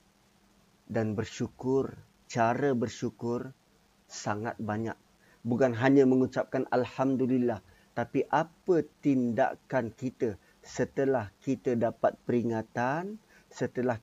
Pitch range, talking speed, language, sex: 120-190 Hz, 80 wpm, Malay, male